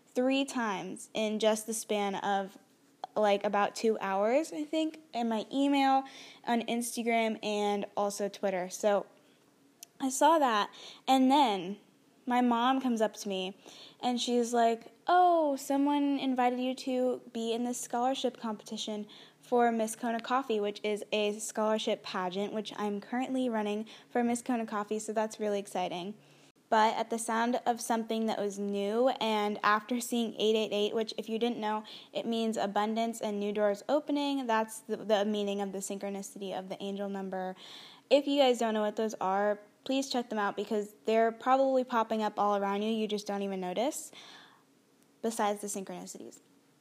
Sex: female